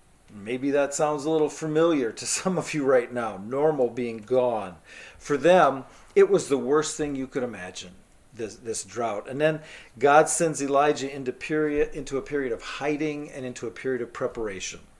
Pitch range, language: 135-165 Hz, English